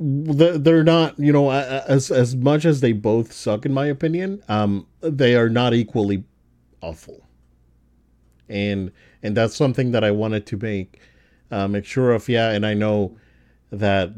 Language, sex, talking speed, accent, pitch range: English, male, 160 wpm, American, 95-135 Hz